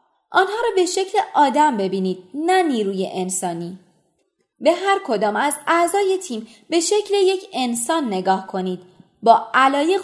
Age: 20-39